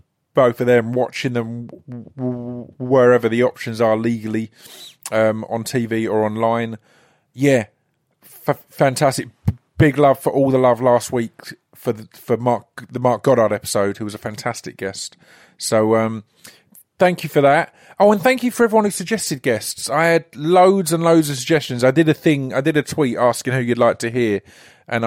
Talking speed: 185 wpm